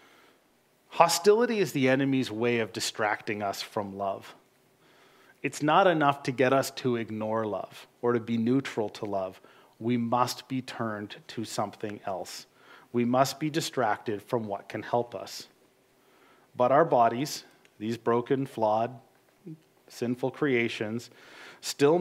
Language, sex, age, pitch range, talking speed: English, male, 40-59, 115-140 Hz, 135 wpm